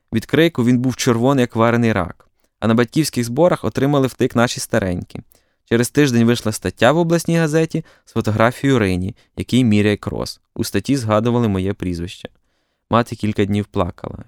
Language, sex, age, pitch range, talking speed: Ukrainian, male, 20-39, 110-140 Hz, 155 wpm